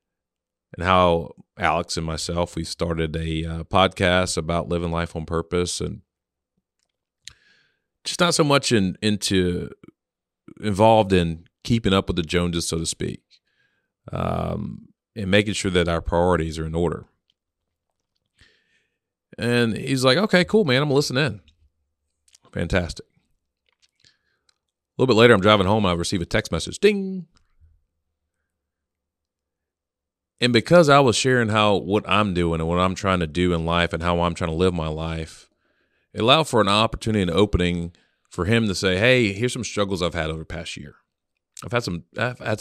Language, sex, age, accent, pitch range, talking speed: English, male, 40-59, American, 85-105 Hz, 165 wpm